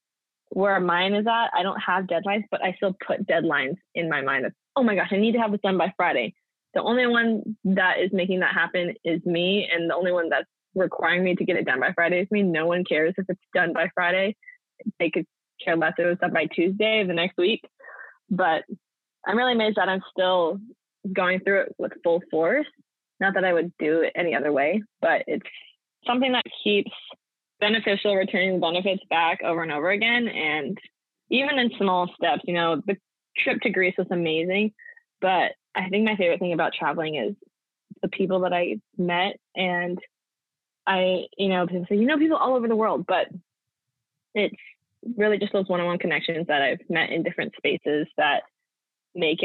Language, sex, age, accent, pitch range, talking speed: English, female, 20-39, American, 175-210 Hz, 200 wpm